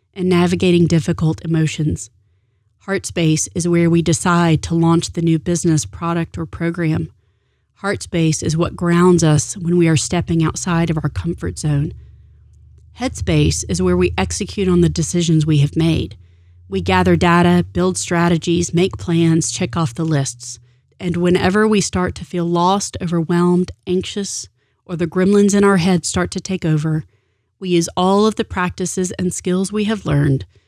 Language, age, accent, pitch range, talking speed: English, 30-49, American, 135-180 Hz, 170 wpm